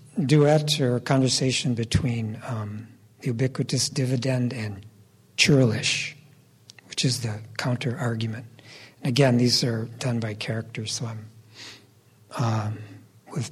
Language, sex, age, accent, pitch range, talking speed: English, male, 60-79, American, 120-150 Hz, 110 wpm